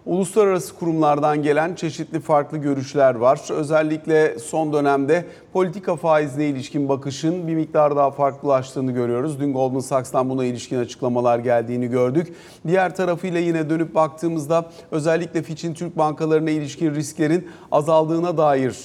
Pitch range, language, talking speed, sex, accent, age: 135-170 Hz, Turkish, 125 wpm, male, native, 40-59